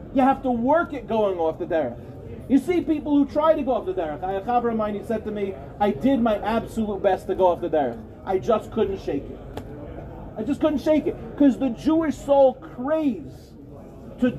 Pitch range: 235-310 Hz